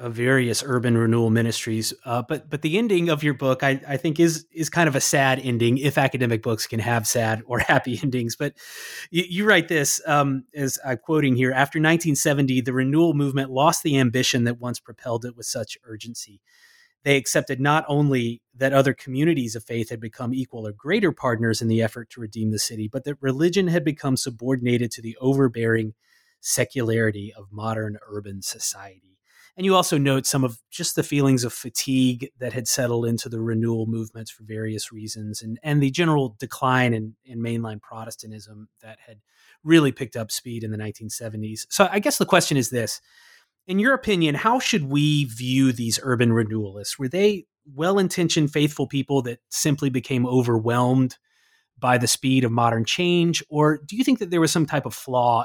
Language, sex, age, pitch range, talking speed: English, male, 30-49, 115-150 Hz, 190 wpm